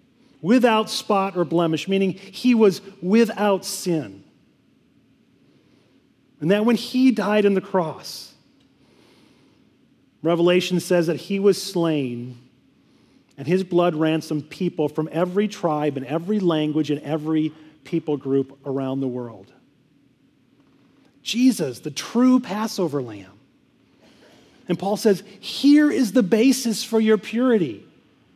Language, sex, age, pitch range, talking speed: English, male, 40-59, 180-245 Hz, 120 wpm